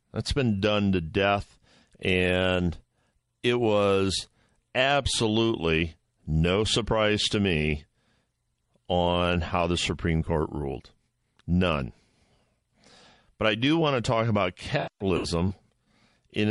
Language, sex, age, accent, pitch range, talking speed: English, male, 50-69, American, 90-115 Hz, 105 wpm